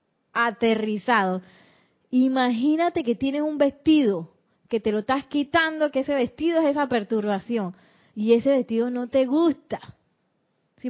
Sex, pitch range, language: female, 220-295 Hz, Spanish